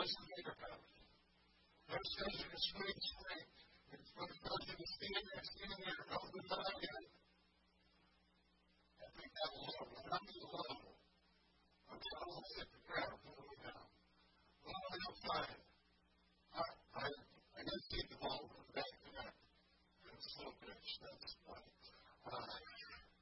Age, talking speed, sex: 40-59, 35 wpm, female